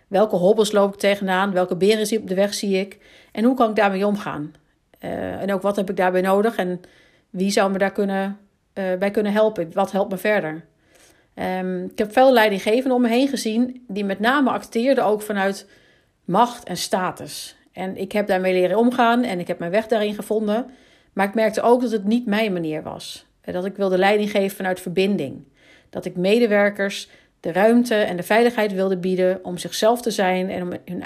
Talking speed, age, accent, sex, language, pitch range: 200 wpm, 40-59, Dutch, female, Dutch, 185-220 Hz